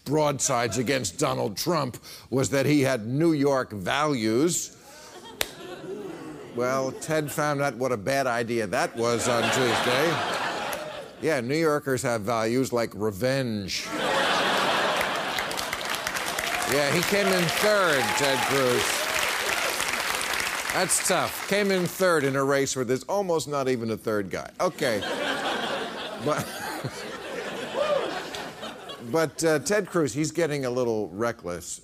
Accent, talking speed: American, 120 wpm